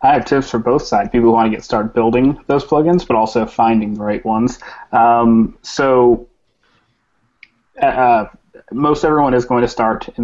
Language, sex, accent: English, male, American